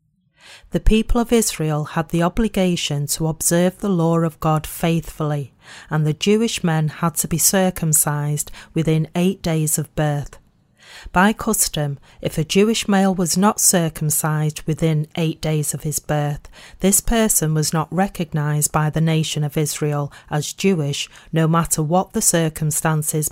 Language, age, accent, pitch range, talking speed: English, 40-59, British, 150-185 Hz, 150 wpm